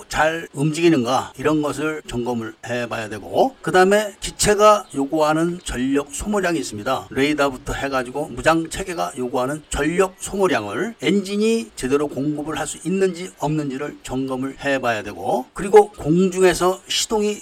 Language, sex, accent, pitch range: Korean, male, native, 140-190 Hz